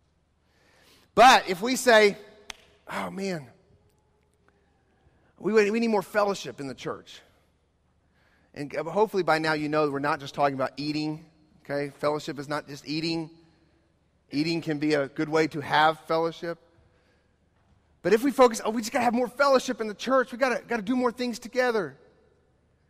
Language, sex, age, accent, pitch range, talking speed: English, male, 30-49, American, 140-210 Hz, 160 wpm